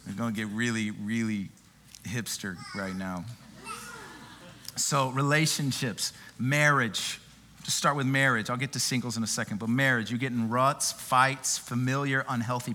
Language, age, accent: English, 40-59, American